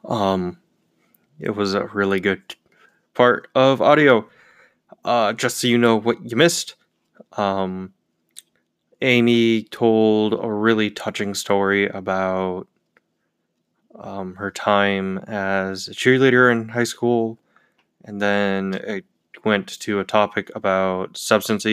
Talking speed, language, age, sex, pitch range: 120 wpm, English, 20-39, male, 95-110 Hz